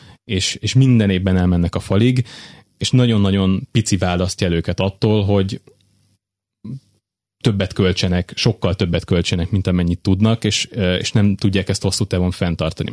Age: 20-39